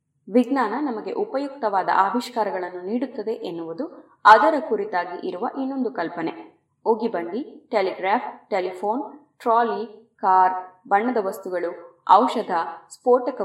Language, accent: Kannada, native